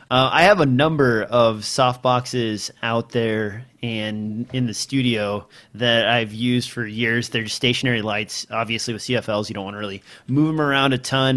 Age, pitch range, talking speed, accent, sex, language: 30-49, 115-135 Hz, 180 wpm, American, male, English